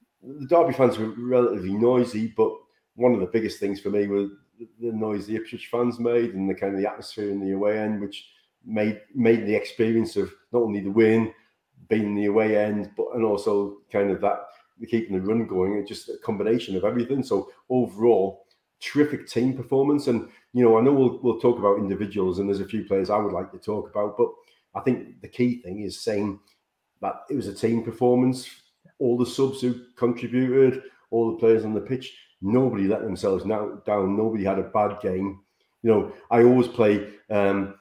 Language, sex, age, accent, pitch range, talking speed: English, male, 30-49, British, 100-125 Hz, 205 wpm